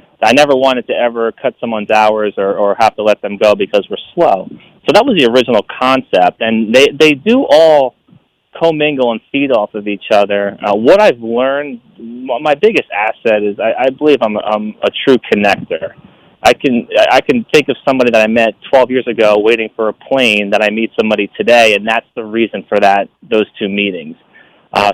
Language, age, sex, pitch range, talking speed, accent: English, 30-49, male, 105-130 Hz, 200 wpm, American